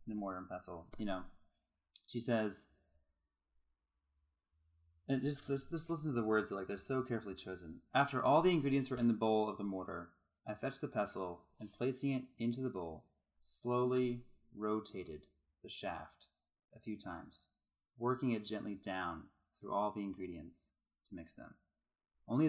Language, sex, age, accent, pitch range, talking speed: English, male, 30-49, American, 90-125 Hz, 165 wpm